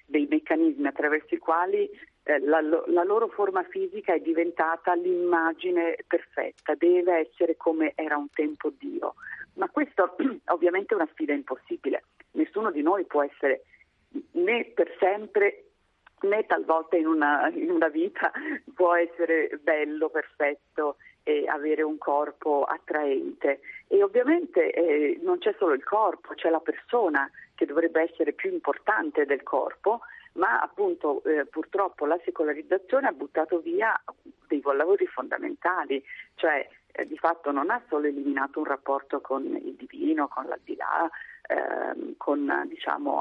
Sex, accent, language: female, native, Italian